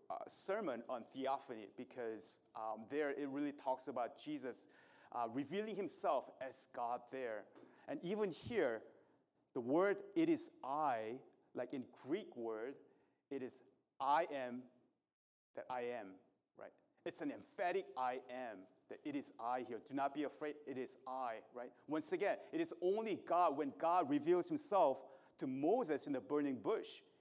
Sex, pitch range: male, 130-215 Hz